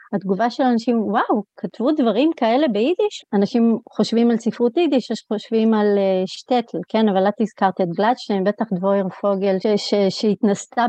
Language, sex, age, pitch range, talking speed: Hebrew, female, 30-49, 195-235 Hz, 150 wpm